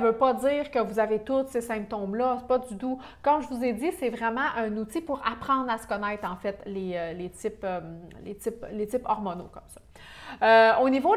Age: 30-49